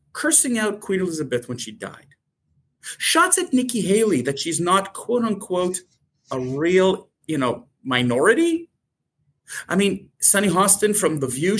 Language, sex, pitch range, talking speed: English, male, 165-235 Hz, 145 wpm